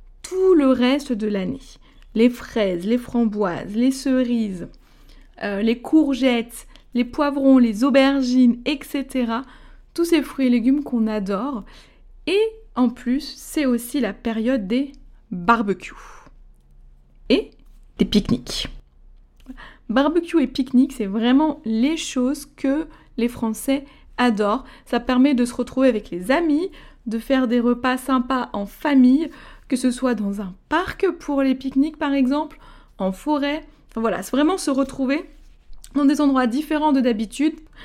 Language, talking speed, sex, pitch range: French, 140 wpm, female, 235-285 Hz